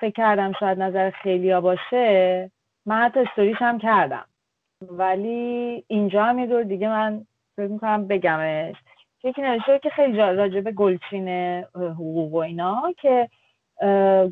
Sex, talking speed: female, 115 wpm